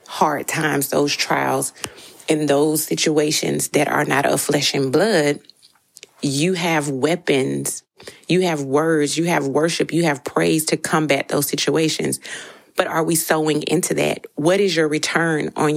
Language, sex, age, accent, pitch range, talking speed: English, female, 30-49, American, 140-165 Hz, 155 wpm